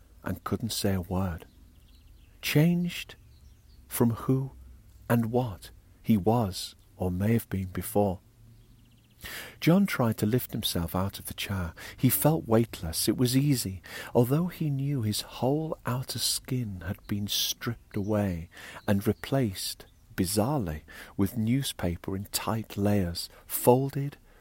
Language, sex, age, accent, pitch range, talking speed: English, male, 50-69, British, 90-120 Hz, 130 wpm